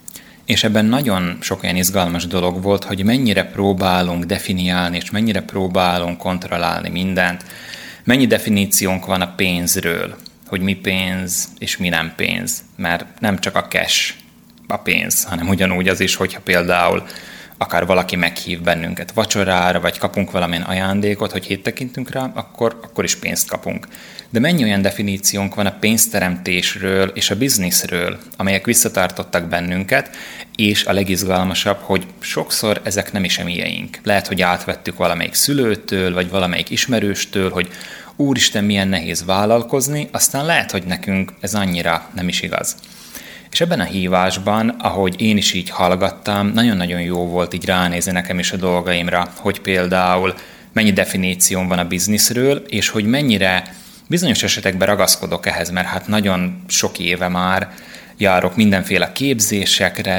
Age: 20-39